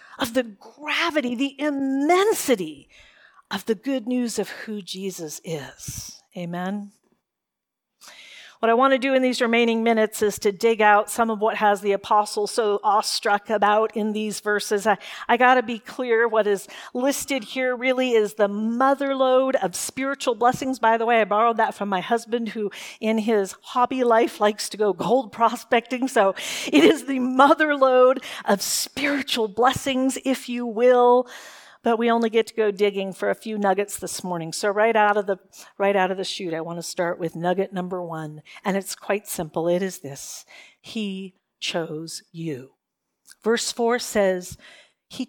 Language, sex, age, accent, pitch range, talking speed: English, female, 40-59, American, 200-250 Hz, 175 wpm